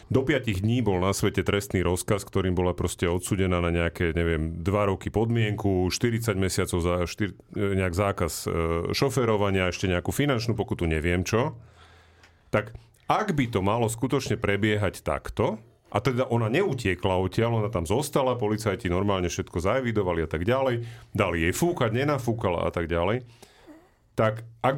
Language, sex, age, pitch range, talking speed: Slovak, male, 40-59, 95-130 Hz, 155 wpm